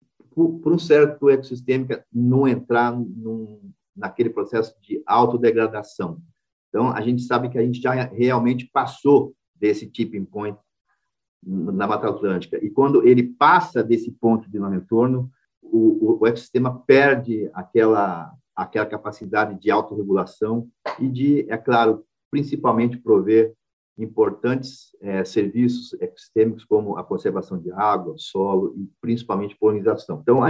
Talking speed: 130 wpm